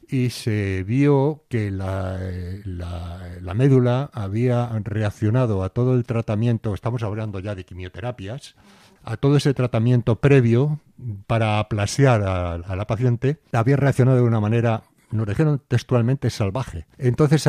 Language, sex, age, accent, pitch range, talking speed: Spanish, male, 60-79, Spanish, 95-125 Hz, 135 wpm